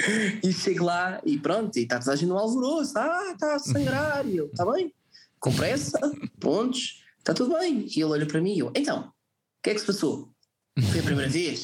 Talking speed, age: 205 wpm, 20-39